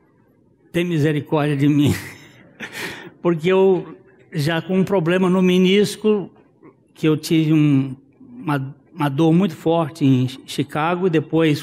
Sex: male